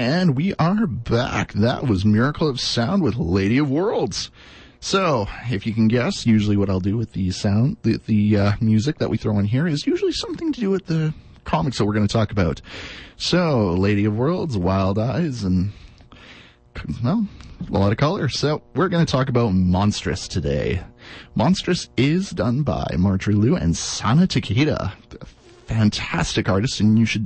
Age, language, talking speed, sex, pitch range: 30-49, English, 185 wpm, male, 105-145 Hz